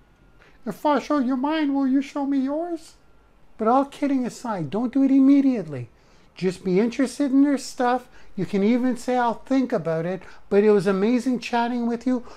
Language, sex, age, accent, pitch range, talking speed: English, male, 50-69, American, 170-240 Hz, 190 wpm